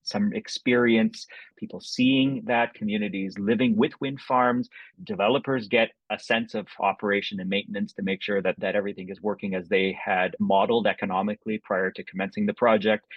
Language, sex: English, male